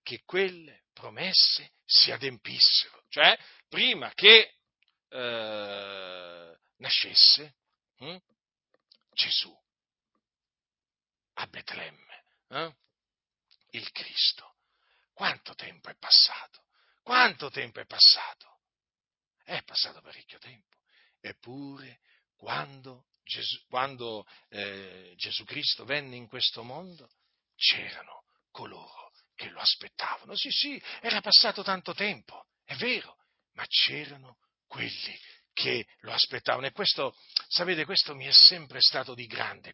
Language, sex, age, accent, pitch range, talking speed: Italian, male, 50-69, native, 115-170 Hz, 105 wpm